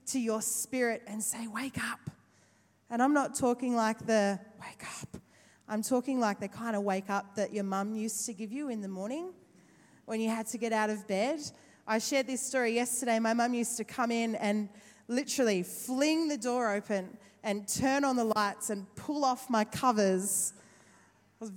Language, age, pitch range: English, 20-39, 220-285 Hz